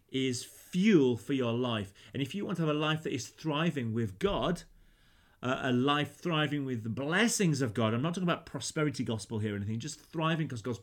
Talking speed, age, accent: 220 wpm, 30-49, British